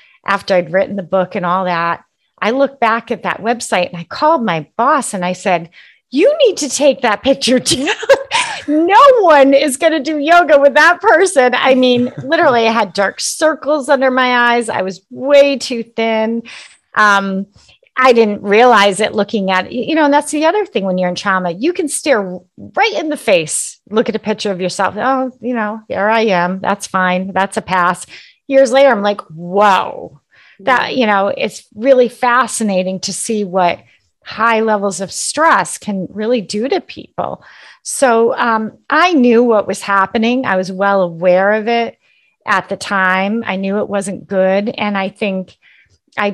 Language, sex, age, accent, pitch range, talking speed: English, female, 30-49, American, 195-260 Hz, 185 wpm